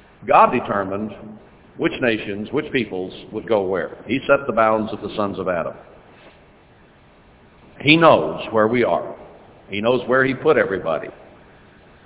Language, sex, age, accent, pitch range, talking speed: English, male, 60-79, American, 105-130 Hz, 145 wpm